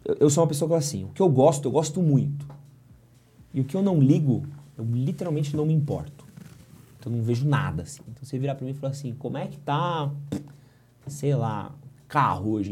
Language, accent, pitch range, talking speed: Portuguese, Brazilian, 115-145 Hz, 225 wpm